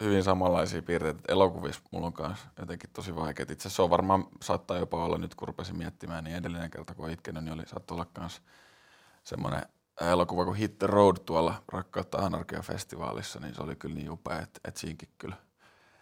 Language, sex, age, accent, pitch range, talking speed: Finnish, male, 20-39, native, 85-95 Hz, 175 wpm